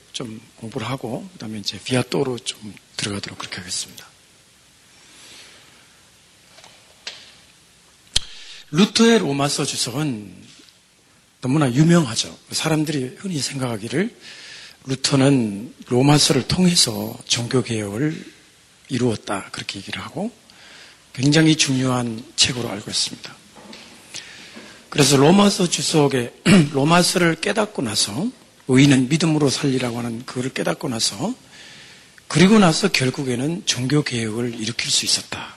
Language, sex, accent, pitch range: Korean, male, native, 120-175 Hz